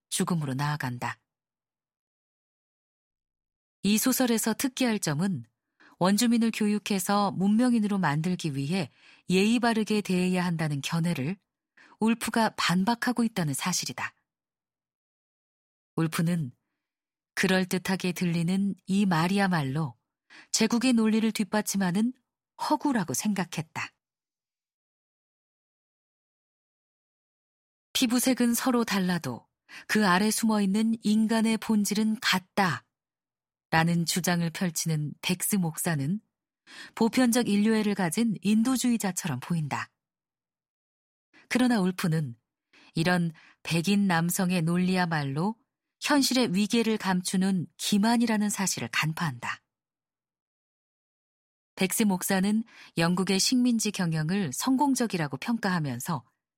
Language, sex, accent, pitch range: Korean, female, native, 165-220 Hz